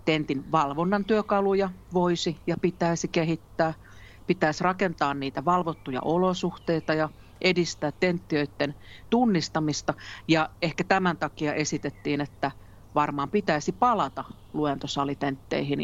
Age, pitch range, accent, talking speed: 40-59, 145-195 Hz, native, 100 wpm